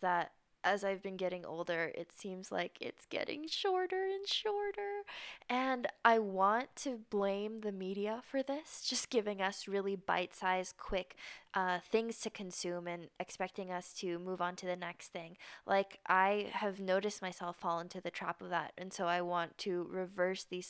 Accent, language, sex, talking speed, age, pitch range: American, English, female, 175 wpm, 10-29, 175-205 Hz